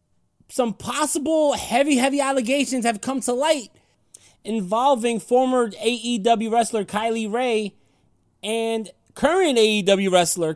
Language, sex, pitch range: English, male, 150-245 Hz